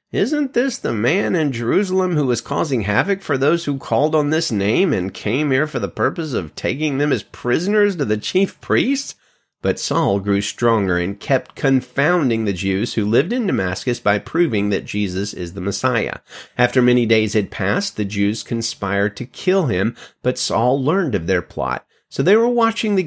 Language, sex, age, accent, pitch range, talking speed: English, male, 30-49, American, 105-150 Hz, 195 wpm